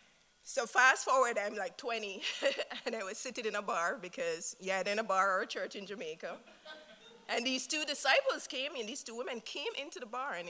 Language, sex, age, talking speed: English, female, 20-39, 210 wpm